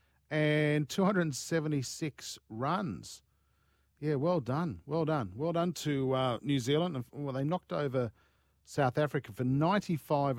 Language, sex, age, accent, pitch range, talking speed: English, male, 50-69, Australian, 130-180 Hz, 125 wpm